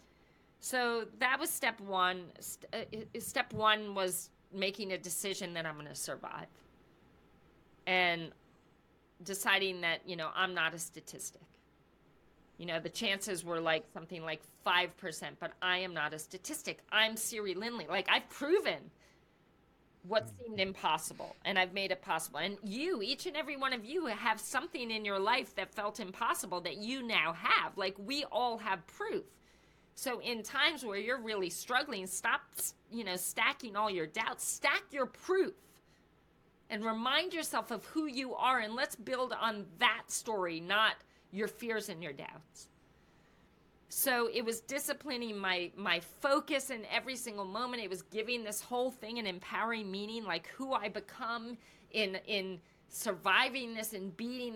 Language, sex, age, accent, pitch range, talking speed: English, female, 40-59, American, 185-240 Hz, 160 wpm